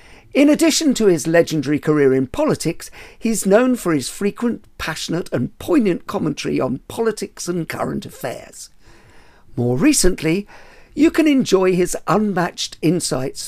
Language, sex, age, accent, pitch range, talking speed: English, male, 50-69, British, 145-210 Hz, 135 wpm